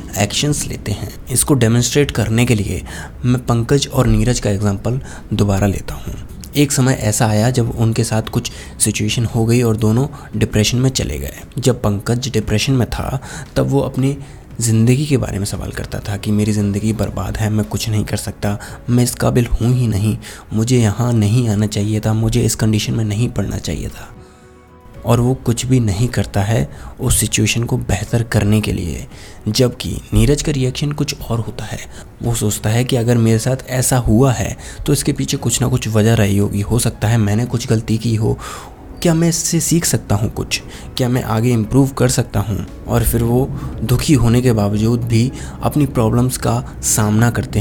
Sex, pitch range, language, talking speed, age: male, 105-125 Hz, Hindi, 195 wpm, 20-39